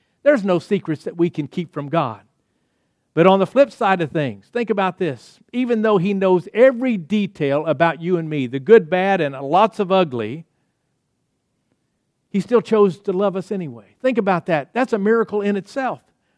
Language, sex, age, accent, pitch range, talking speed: English, male, 50-69, American, 165-230 Hz, 185 wpm